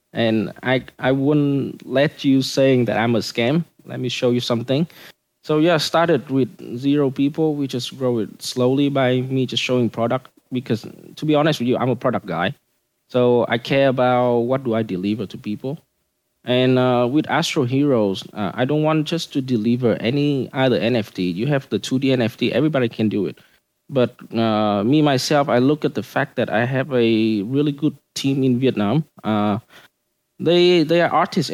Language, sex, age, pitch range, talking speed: English, male, 20-39, 120-145 Hz, 190 wpm